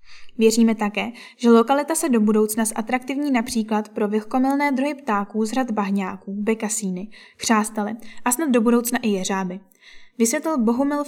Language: Czech